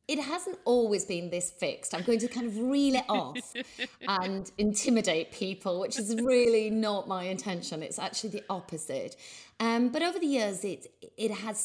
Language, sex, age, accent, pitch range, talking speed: English, female, 30-49, British, 165-230 Hz, 180 wpm